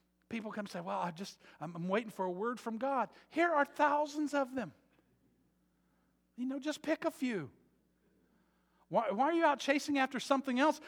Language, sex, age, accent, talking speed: English, male, 50-69, American, 190 wpm